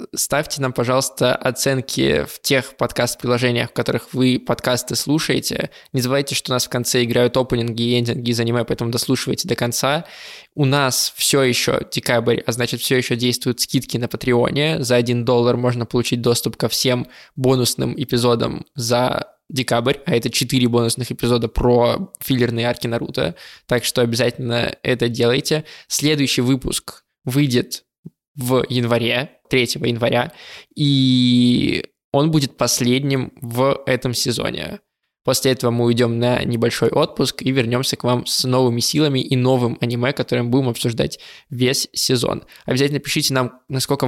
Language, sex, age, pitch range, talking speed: Russian, male, 20-39, 120-135 Hz, 145 wpm